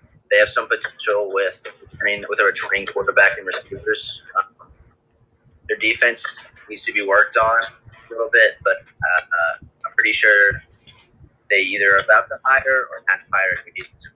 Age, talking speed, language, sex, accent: 30-49, 175 wpm, English, male, American